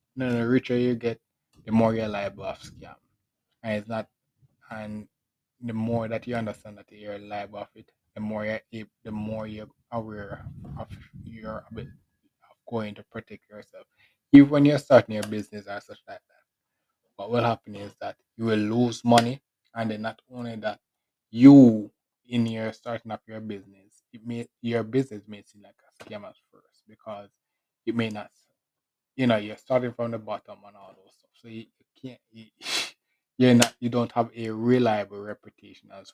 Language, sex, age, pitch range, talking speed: English, male, 20-39, 105-120 Hz, 185 wpm